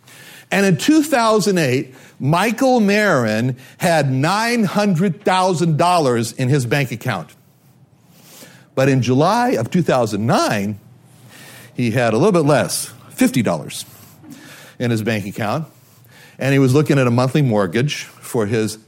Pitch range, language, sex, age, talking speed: 120-165 Hz, English, male, 60-79, 120 wpm